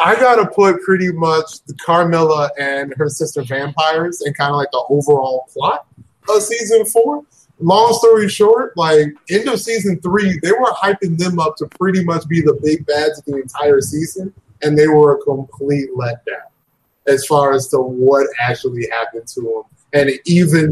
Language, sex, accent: English, male, American